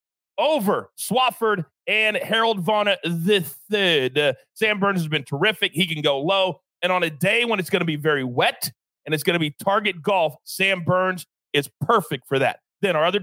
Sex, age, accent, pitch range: male, 40-59, American, 155-210 Hz